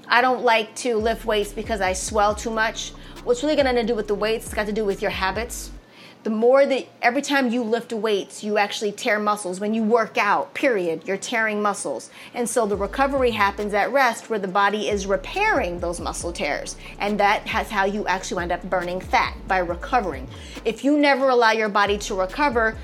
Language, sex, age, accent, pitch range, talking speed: English, female, 30-49, American, 195-240 Hz, 215 wpm